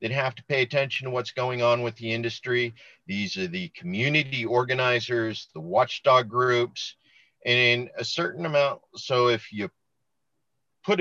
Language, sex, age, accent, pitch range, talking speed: English, male, 50-69, American, 105-135 Hz, 160 wpm